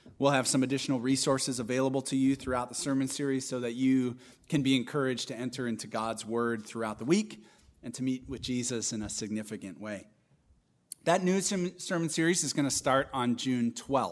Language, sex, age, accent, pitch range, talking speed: English, male, 30-49, American, 125-155 Hz, 190 wpm